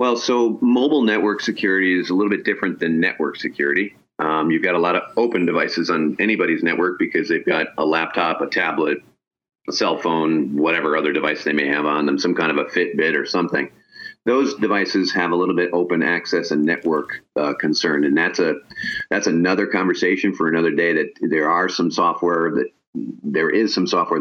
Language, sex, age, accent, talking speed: English, male, 40-59, American, 195 wpm